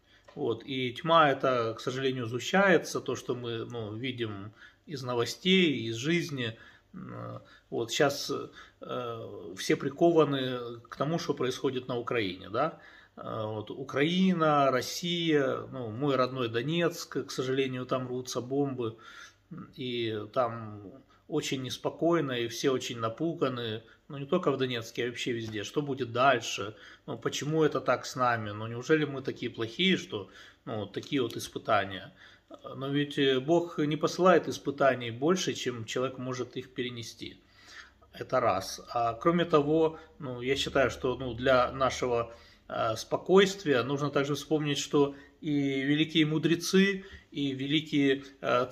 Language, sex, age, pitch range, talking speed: Russian, male, 30-49, 120-150 Hz, 135 wpm